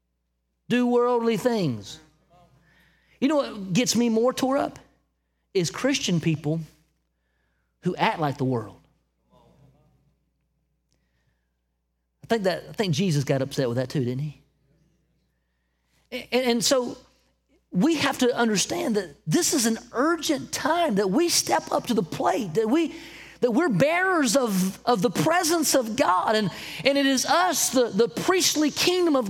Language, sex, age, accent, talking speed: English, male, 40-59, American, 145 wpm